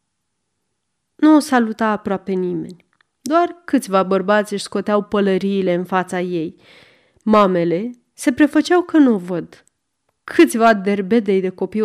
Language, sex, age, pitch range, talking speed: Romanian, female, 30-49, 185-235 Hz, 125 wpm